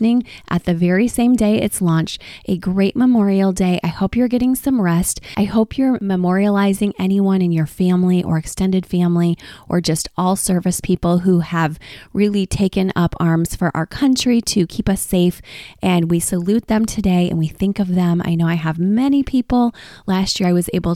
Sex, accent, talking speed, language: female, American, 190 wpm, English